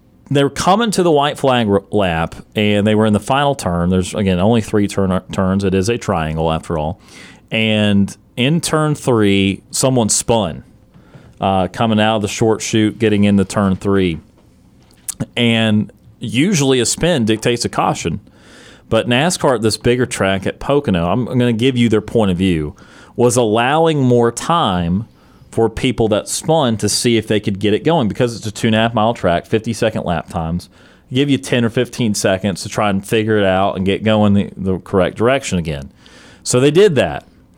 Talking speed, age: 190 wpm, 30-49